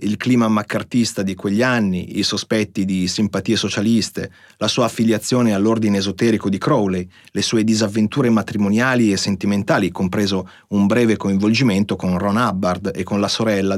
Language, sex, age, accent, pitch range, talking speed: Italian, male, 30-49, native, 100-120 Hz, 155 wpm